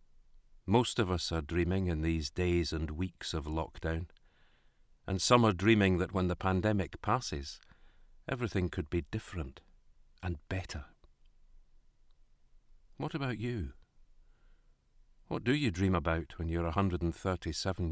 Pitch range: 85-110 Hz